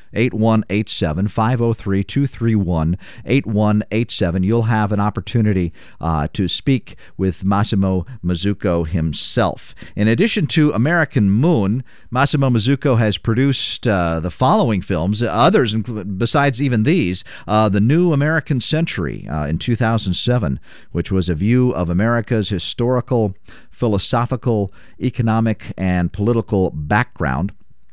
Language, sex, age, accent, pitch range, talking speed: English, male, 50-69, American, 95-125 Hz, 115 wpm